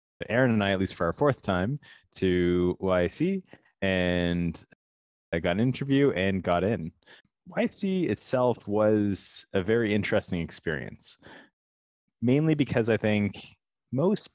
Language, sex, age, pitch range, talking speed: English, male, 20-39, 85-110 Hz, 130 wpm